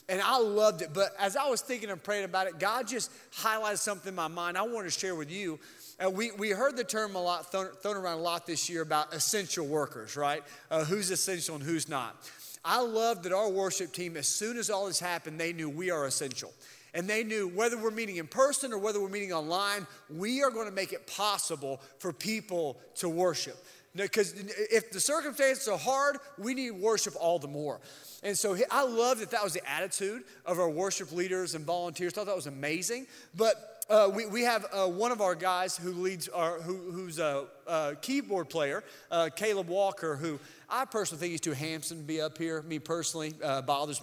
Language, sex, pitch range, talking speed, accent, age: English, male, 170-235 Hz, 220 wpm, American, 30-49